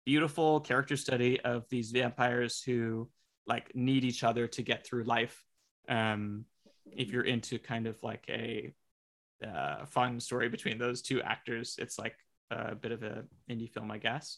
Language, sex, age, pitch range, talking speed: English, male, 20-39, 115-135 Hz, 165 wpm